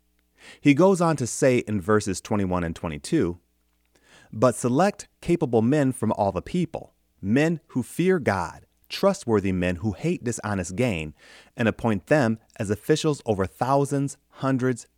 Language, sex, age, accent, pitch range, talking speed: English, male, 30-49, American, 90-140 Hz, 145 wpm